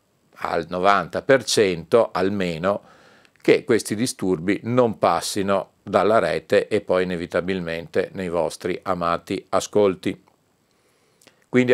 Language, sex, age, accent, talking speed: Italian, male, 40-59, native, 90 wpm